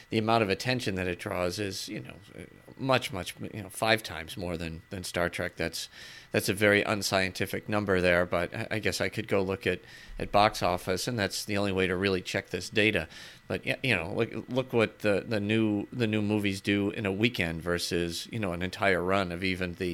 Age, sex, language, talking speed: 40-59, male, English, 225 wpm